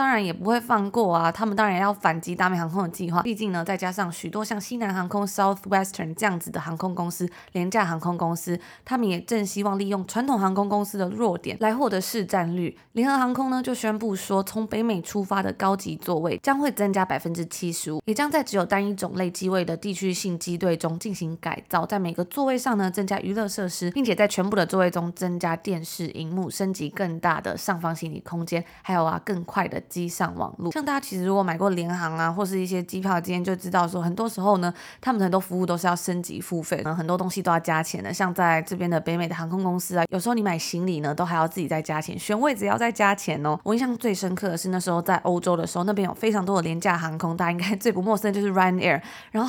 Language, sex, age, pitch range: Chinese, female, 20-39, 175-205 Hz